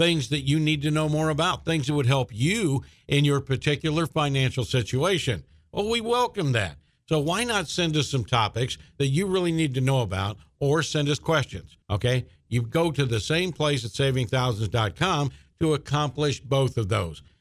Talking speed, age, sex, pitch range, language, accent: 185 wpm, 50-69, male, 120-160 Hz, English, American